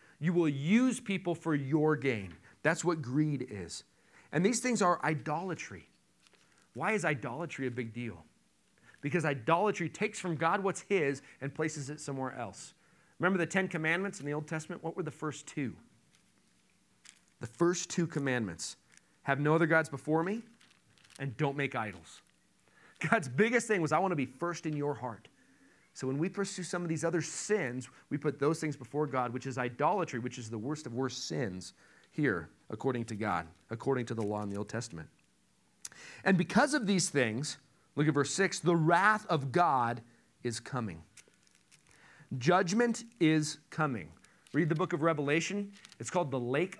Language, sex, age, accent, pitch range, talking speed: English, male, 40-59, American, 125-175 Hz, 175 wpm